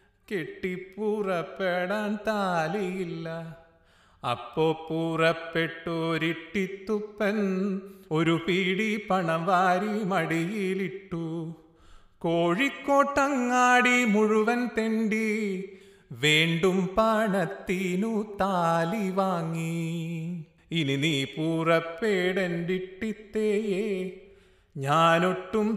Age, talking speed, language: 30-49, 50 wpm, Malayalam